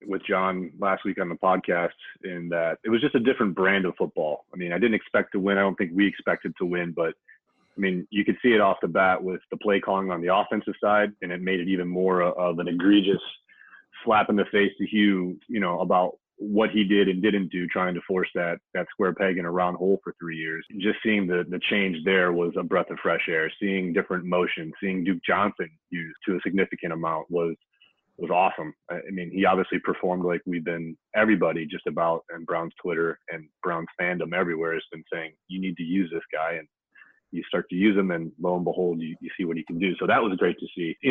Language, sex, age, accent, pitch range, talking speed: English, male, 30-49, American, 85-100 Hz, 240 wpm